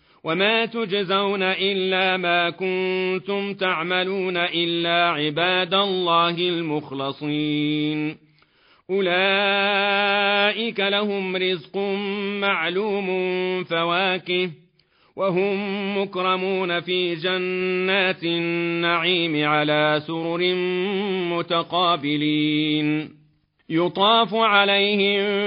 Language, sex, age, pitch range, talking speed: Arabic, male, 40-59, 170-200 Hz, 60 wpm